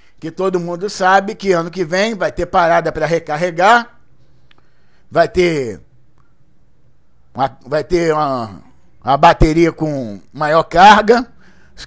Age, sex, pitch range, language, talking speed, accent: 50-69, male, 160-225 Hz, Portuguese, 125 wpm, Brazilian